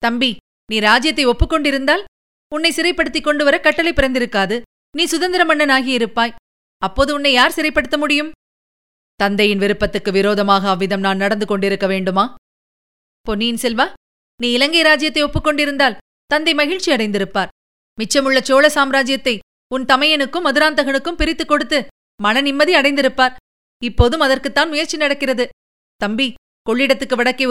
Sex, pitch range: female, 220-295 Hz